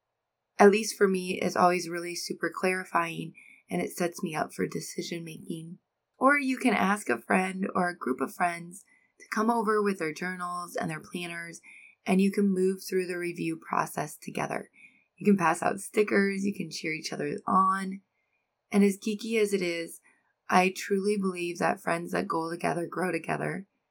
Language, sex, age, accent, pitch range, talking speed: English, female, 20-39, American, 175-205 Hz, 180 wpm